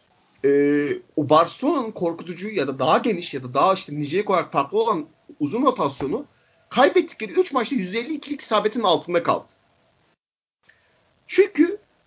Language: Turkish